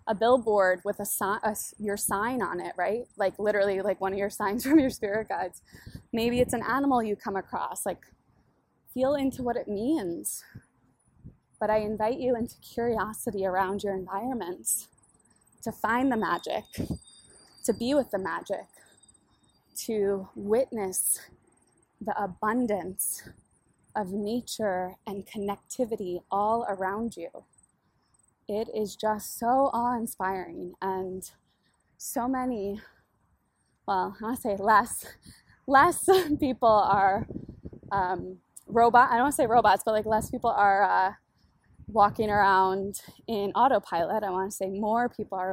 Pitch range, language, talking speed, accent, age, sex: 190-230 Hz, English, 140 wpm, American, 20-39, female